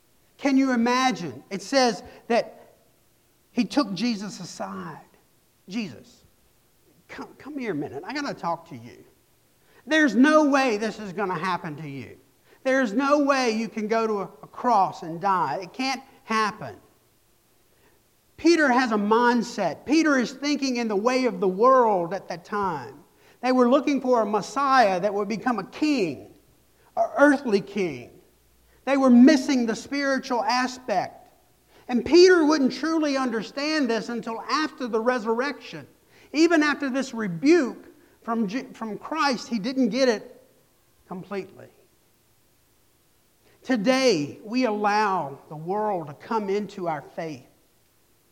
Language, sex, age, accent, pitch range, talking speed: English, male, 50-69, American, 195-270 Hz, 145 wpm